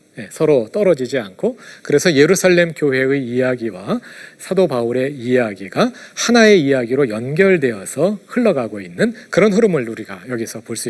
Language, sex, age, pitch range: Korean, male, 40-59, 130-205 Hz